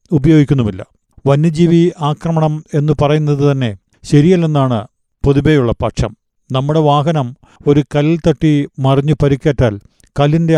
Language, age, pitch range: Malayalam, 50-69, 135-160 Hz